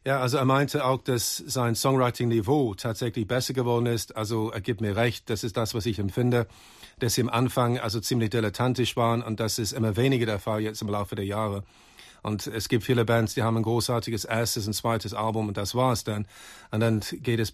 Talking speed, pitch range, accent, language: 220 wpm, 105-125 Hz, German, German